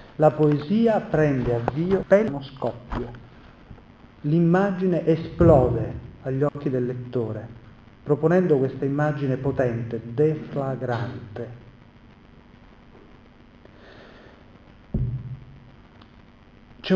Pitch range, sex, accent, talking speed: 120-150 Hz, male, native, 65 wpm